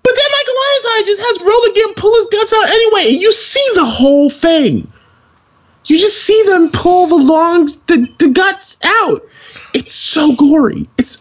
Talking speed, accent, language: 175 wpm, American, English